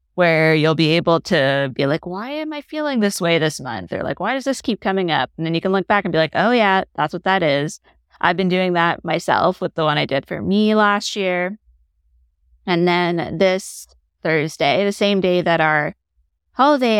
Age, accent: 20-39, American